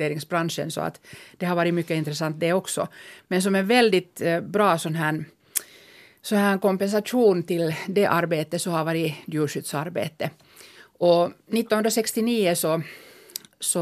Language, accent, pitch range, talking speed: Finnish, native, 160-190 Hz, 115 wpm